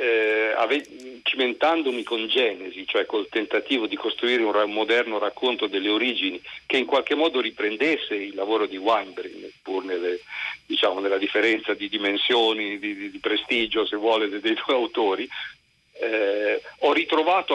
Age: 50-69